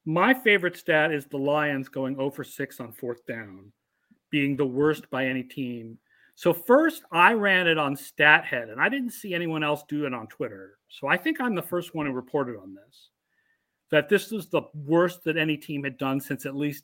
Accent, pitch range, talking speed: American, 130-180 Hz, 215 wpm